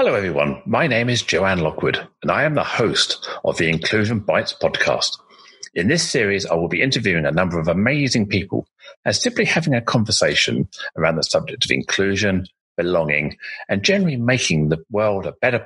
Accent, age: British, 40-59